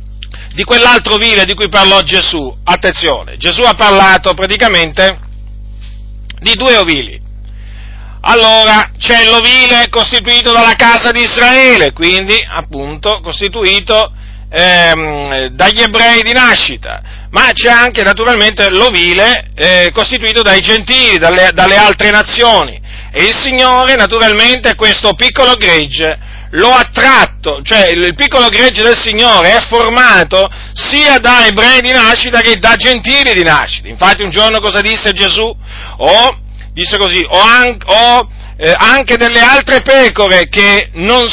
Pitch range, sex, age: 180-240 Hz, male, 40-59